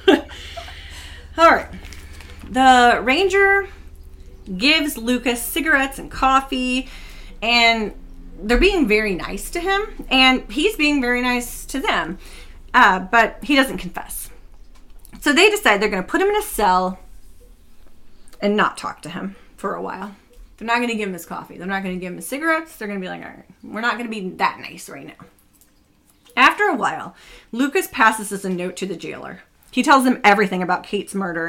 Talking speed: 185 wpm